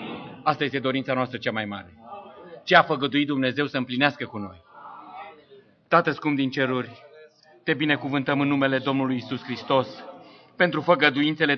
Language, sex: English, male